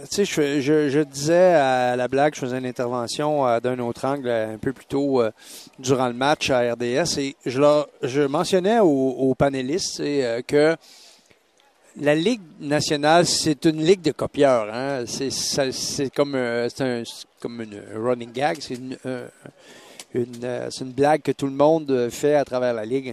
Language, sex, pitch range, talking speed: French, male, 130-165 Hz, 180 wpm